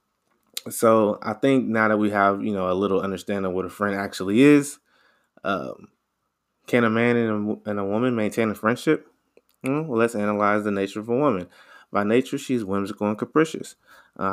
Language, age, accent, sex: English, 20-39, American, male